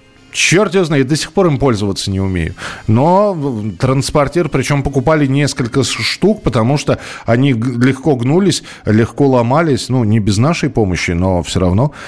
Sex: male